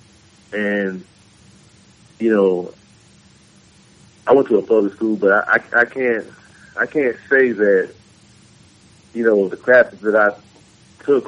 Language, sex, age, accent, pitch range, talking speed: English, male, 30-49, American, 100-120 Hz, 135 wpm